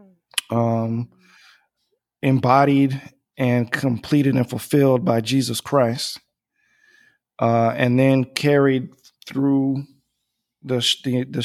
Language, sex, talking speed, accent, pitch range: English, male, 90 wpm, American, 125-140 Hz